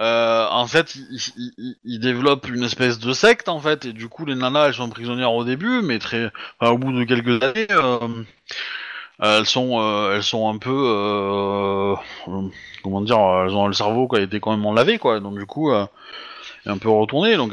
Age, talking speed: 30-49, 210 wpm